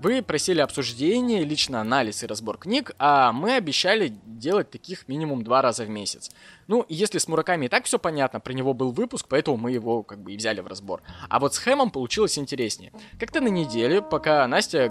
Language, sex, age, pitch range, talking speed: Russian, male, 20-39, 125-195 Hz, 200 wpm